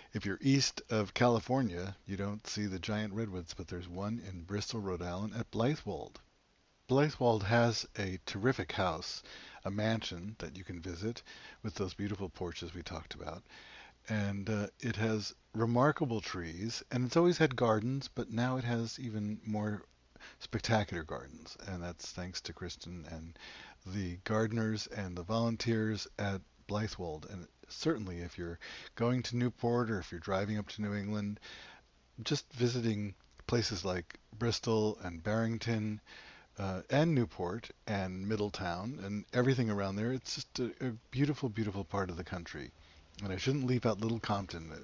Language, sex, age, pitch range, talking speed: English, male, 60-79, 95-115 Hz, 160 wpm